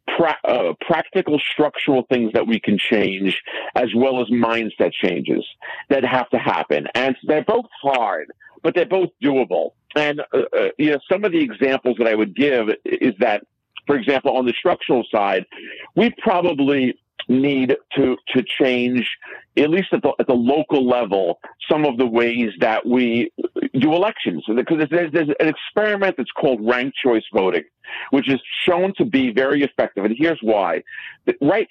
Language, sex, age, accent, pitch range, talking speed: English, male, 50-69, American, 120-170 Hz, 170 wpm